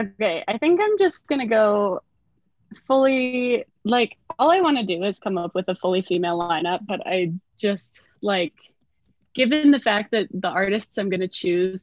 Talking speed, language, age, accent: 170 wpm, English, 20-39, American